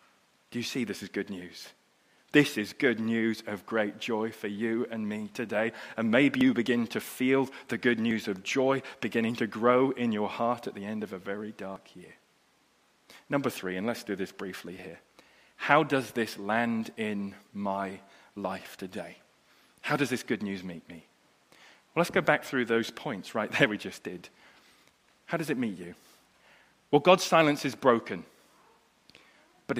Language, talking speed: English, 180 wpm